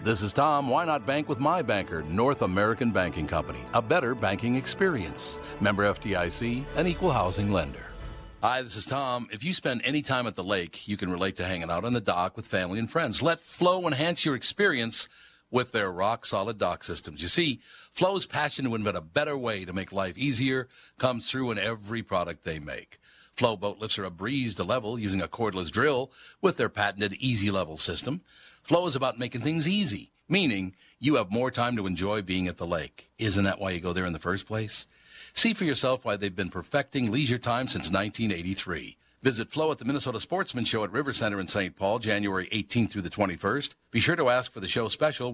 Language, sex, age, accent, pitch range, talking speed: English, male, 60-79, American, 95-140 Hz, 210 wpm